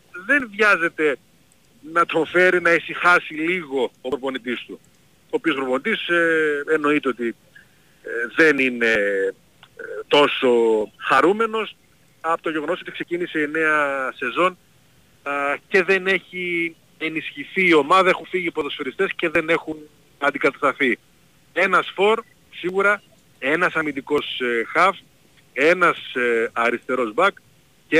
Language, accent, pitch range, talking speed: Greek, native, 135-170 Hz, 120 wpm